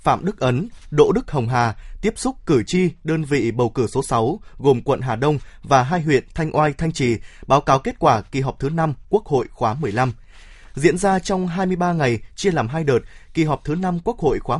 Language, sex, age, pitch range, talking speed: Vietnamese, male, 20-39, 130-180 Hz, 230 wpm